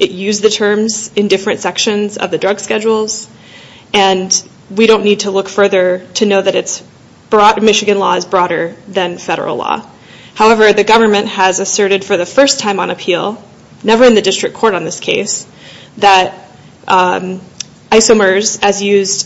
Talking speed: 170 wpm